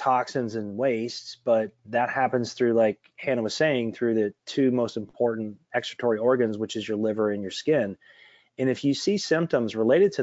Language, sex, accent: English, male, American